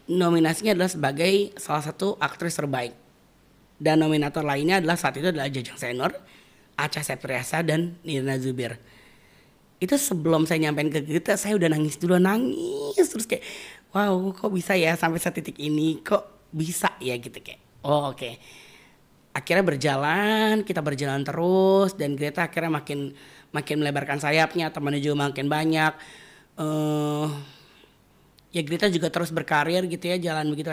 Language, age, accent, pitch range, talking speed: Indonesian, 30-49, native, 150-185 Hz, 150 wpm